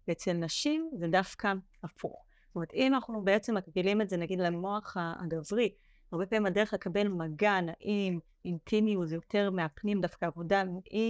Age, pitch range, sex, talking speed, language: 30-49, 175-215 Hz, female, 145 wpm, Hebrew